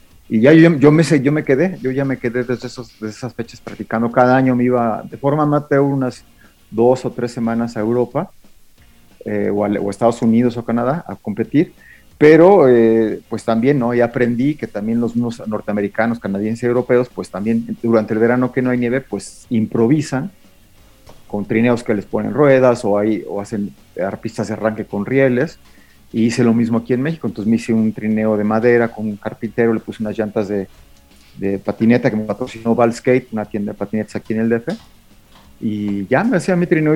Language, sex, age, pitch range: Spanish, male, 40-59, 105-125 Hz